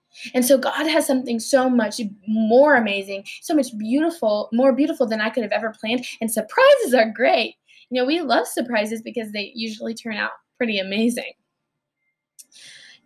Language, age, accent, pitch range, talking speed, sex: English, 10-29, American, 215-260 Hz, 170 wpm, female